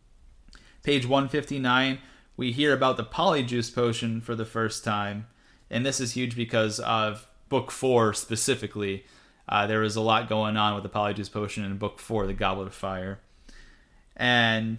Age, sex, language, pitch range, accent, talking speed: 30-49, male, English, 110-125 Hz, American, 160 wpm